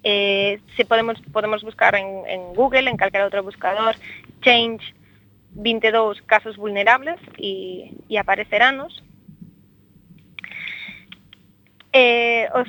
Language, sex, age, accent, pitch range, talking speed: Spanish, female, 20-39, Spanish, 195-225 Hz, 95 wpm